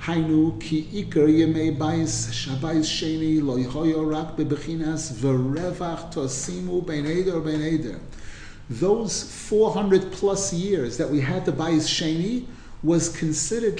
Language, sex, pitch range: English, male, 155-200 Hz